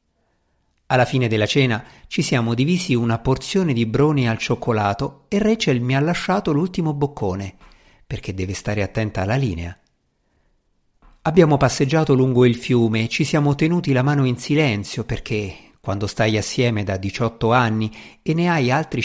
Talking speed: 160 wpm